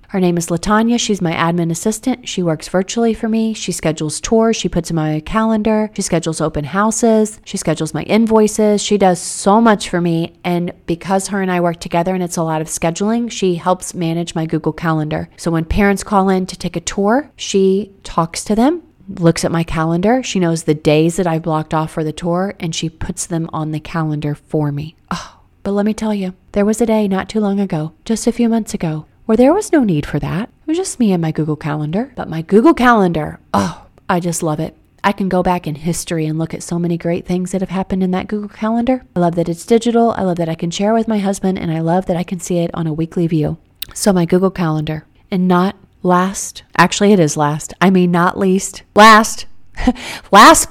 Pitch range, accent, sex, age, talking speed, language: 165-210 Hz, American, female, 30-49, 235 wpm, English